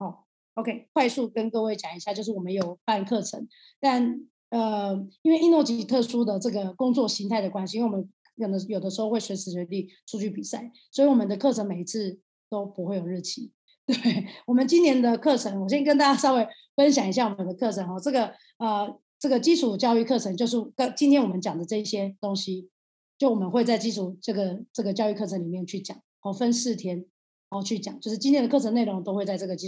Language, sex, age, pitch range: Chinese, female, 30-49, 195-240 Hz